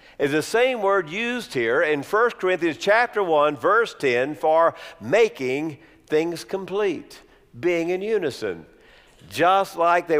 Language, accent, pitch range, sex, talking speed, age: English, American, 155-240 Hz, male, 135 wpm, 50-69